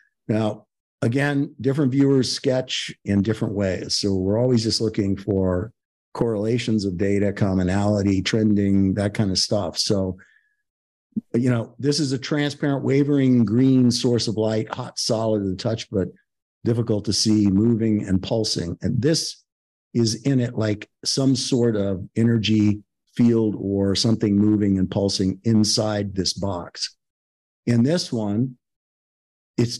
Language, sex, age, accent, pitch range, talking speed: English, male, 50-69, American, 100-125 Hz, 140 wpm